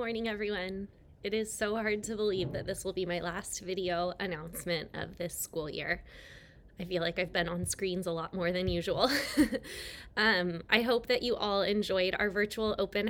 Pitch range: 175-210 Hz